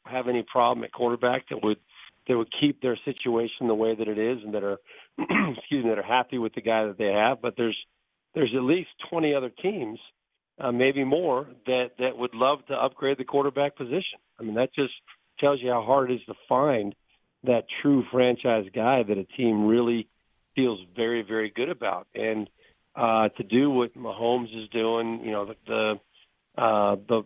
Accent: American